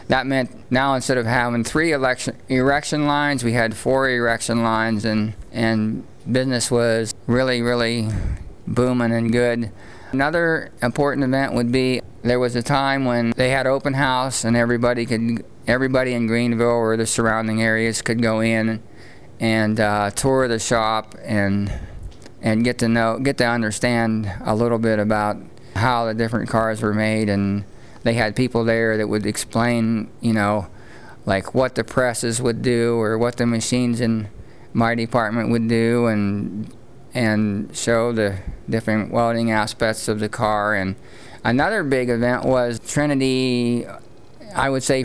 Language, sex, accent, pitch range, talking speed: English, male, American, 110-125 Hz, 155 wpm